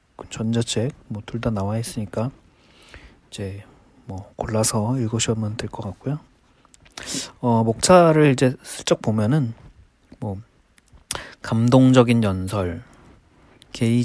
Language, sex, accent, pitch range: Korean, male, native, 105-130 Hz